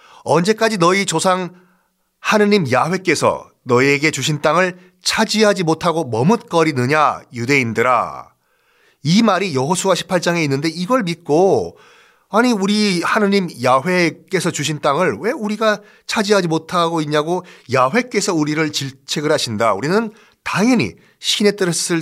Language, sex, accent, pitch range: Korean, male, native, 145-205 Hz